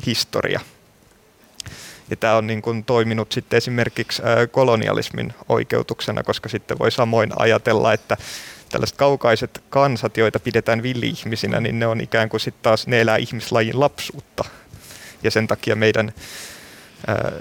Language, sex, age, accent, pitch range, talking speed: Finnish, male, 20-39, native, 110-120 Hz, 130 wpm